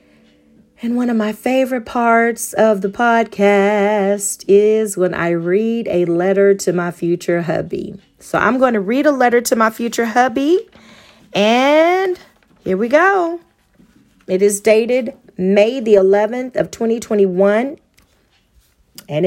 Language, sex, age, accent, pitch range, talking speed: English, female, 40-59, American, 175-235 Hz, 135 wpm